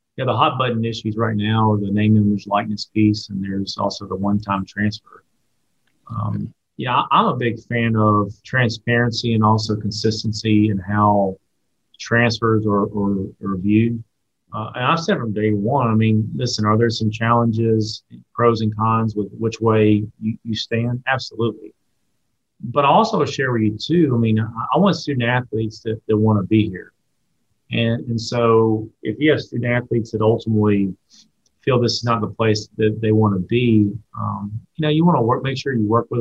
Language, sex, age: English, male, 40-59